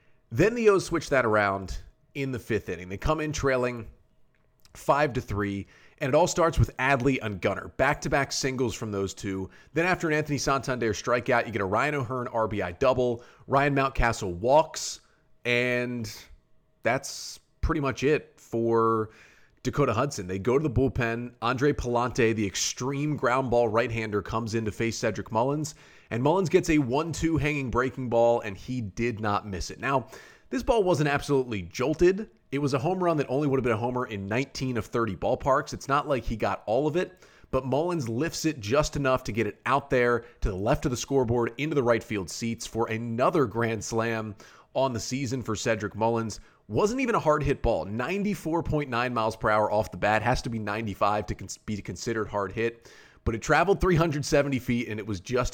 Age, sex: 30-49, male